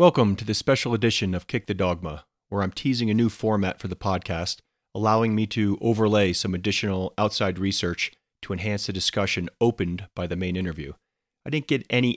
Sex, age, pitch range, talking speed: male, 40-59, 90-110 Hz, 190 wpm